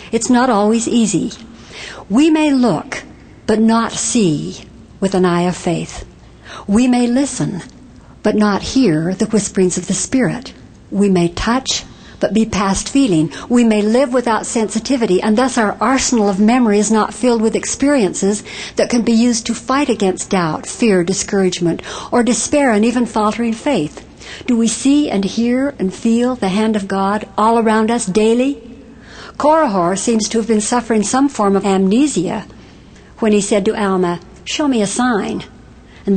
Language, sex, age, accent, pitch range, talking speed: English, female, 60-79, American, 195-240 Hz, 165 wpm